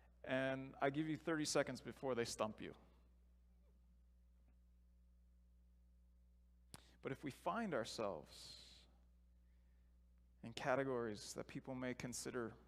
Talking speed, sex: 100 wpm, male